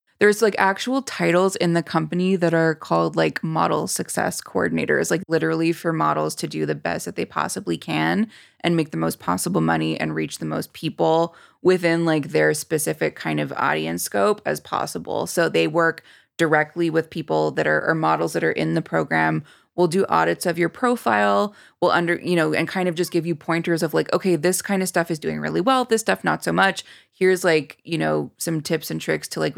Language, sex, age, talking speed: English, female, 20-39, 210 wpm